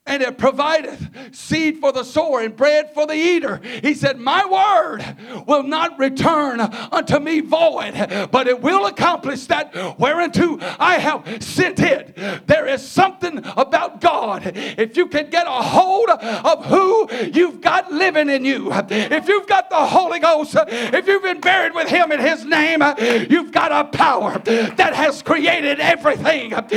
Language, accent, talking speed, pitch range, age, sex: English, American, 165 wpm, 270-345 Hz, 50-69, male